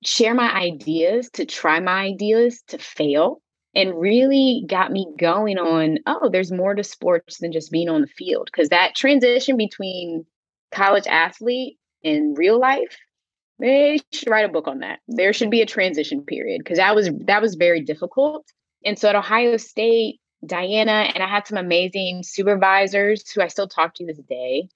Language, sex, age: English, female, 20-39